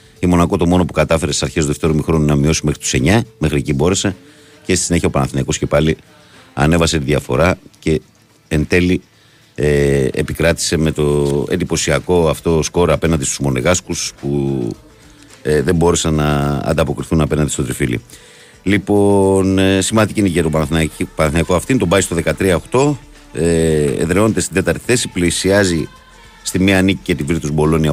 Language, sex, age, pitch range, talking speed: Greek, male, 50-69, 75-95 Hz, 160 wpm